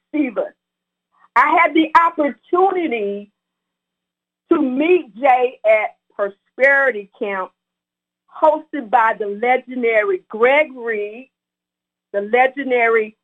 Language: English